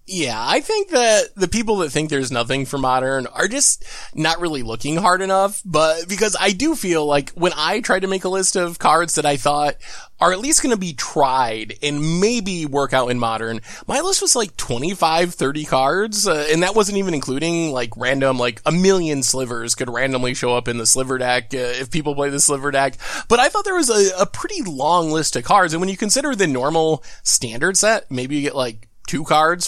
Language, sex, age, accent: English, male, 20-39, American